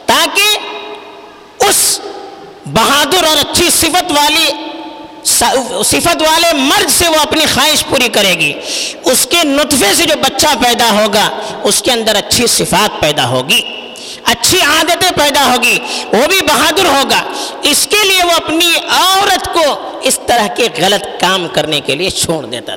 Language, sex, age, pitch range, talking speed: Urdu, female, 50-69, 235-335 Hz, 150 wpm